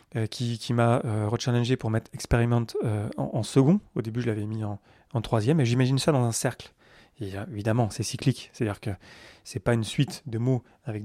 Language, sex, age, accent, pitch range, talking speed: French, male, 30-49, French, 110-135 Hz, 210 wpm